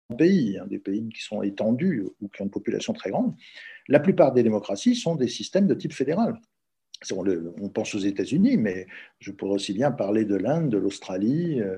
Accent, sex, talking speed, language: French, male, 190 wpm, French